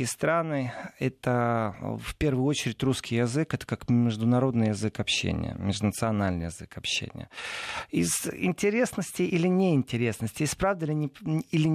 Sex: male